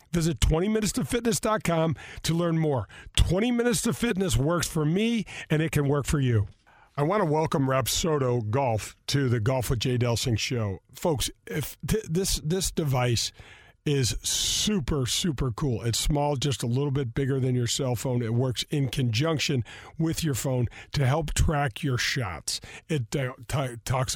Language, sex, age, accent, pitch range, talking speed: English, male, 50-69, American, 125-165 Hz, 170 wpm